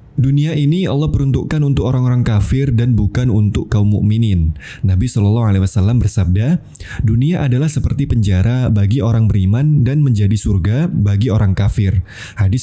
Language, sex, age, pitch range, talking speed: Indonesian, male, 20-39, 105-135 Hz, 140 wpm